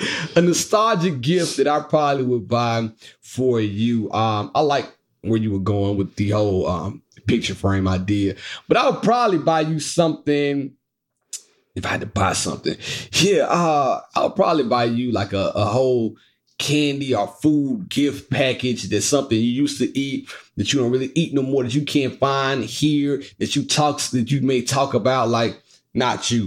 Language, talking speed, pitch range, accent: English, 185 wpm, 115-160 Hz, American